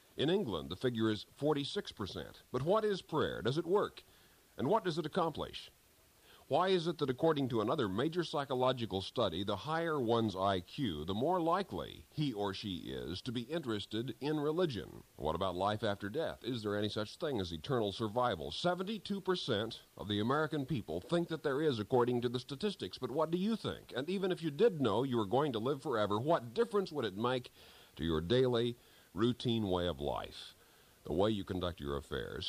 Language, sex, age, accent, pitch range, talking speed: English, male, 50-69, American, 105-155 Hz, 195 wpm